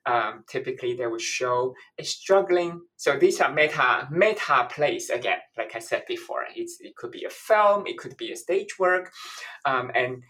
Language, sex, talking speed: English, male, 185 wpm